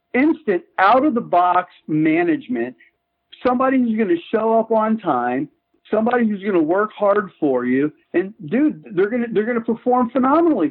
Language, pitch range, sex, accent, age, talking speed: English, 170-270 Hz, male, American, 50-69, 150 wpm